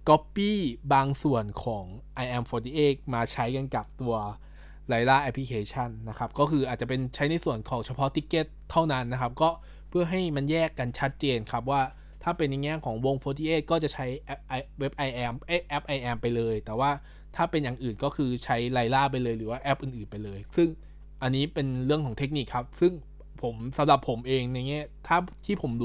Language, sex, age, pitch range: Thai, male, 20-39, 120-150 Hz